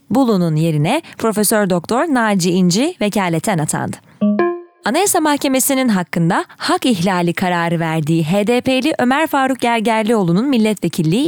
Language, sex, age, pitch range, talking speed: Turkish, female, 30-49, 185-275 Hz, 105 wpm